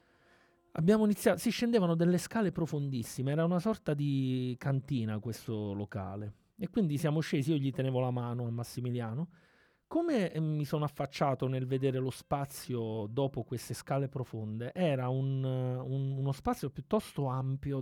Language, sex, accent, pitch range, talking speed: Italian, male, native, 125-160 Hz, 150 wpm